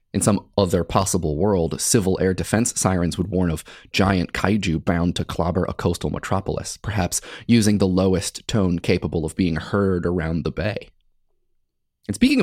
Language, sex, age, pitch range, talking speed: English, male, 30-49, 95-120 Hz, 165 wpm